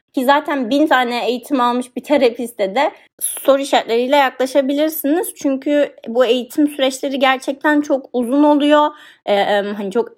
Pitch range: 210-270 Hz